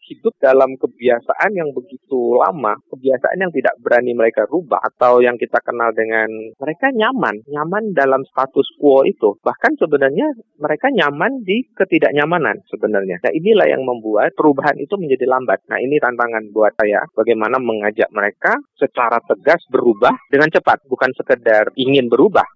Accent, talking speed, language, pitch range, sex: native, 150 wpm, Indonesian, 110-180 Hz, male